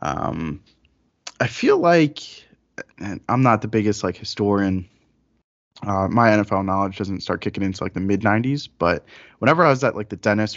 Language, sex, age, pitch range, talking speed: English, male, 20-39, 100-115 Hz, 175 wpm